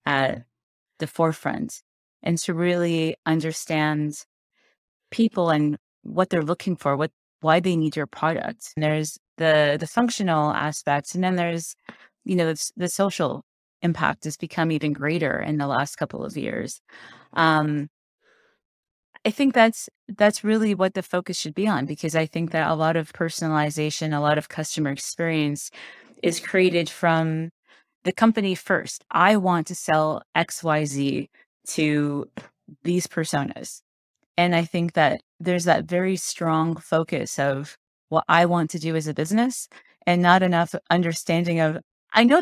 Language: English